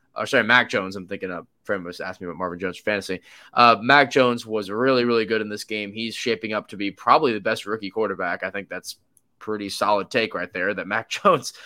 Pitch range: 100-135 Hz